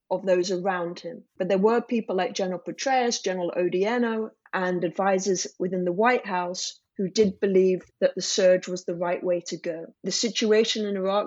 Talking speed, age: 185 wpm, 30-49